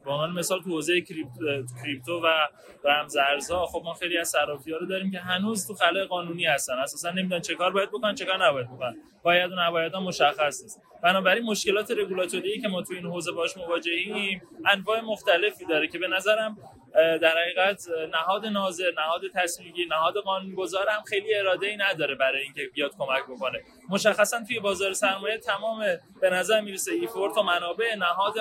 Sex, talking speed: male, 175 wpm